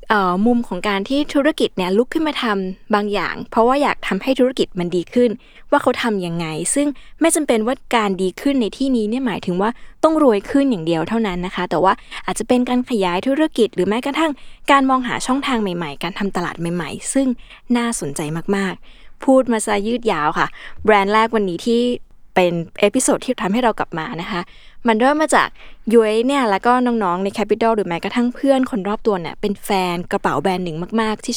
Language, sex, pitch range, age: Thai, female, 190-255 Hz, 20-39